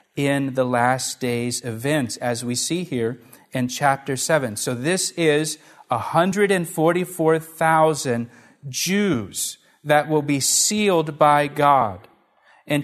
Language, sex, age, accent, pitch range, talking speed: English, male, 40-59, American, 145-170 Hz, 110 wpm